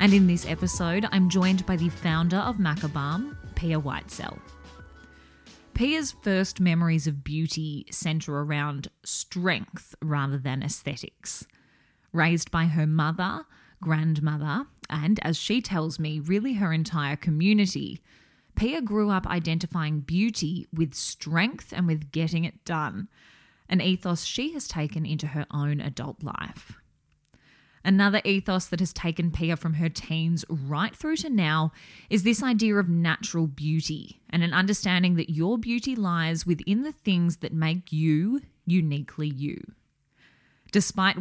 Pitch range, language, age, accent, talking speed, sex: 155-190 Hz, English, 20-39, Australian, 140 wpm, female